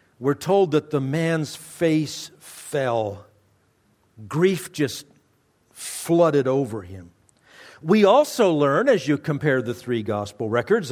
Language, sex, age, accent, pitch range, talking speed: English, male, 50-69, American, 140-195 Hz, 120 wpm